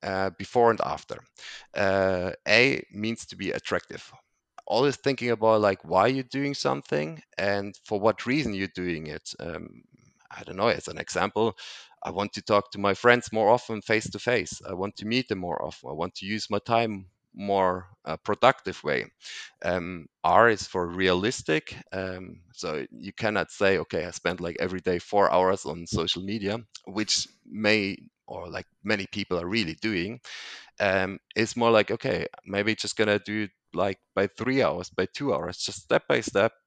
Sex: male